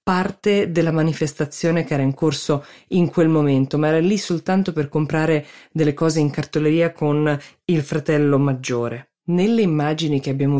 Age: 20-39